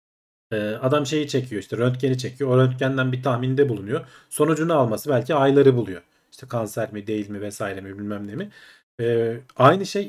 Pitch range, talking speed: 115-155 Hz, 165 wpm